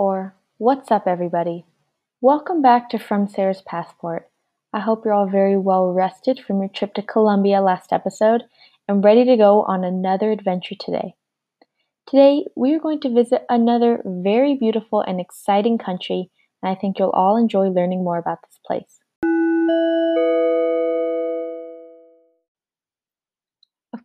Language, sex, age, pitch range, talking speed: English, female, 20-39, 185-250 Hz, 140 wpm